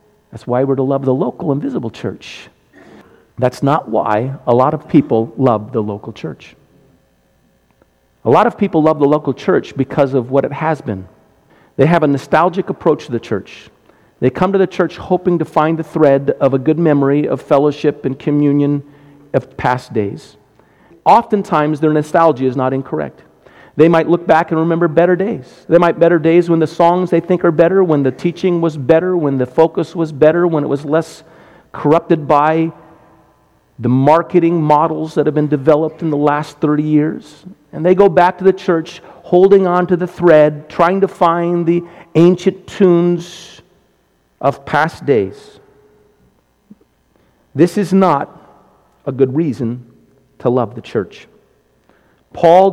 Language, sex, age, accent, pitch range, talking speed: English, male, 50-69, American, 135-170 Hz, 170 wpm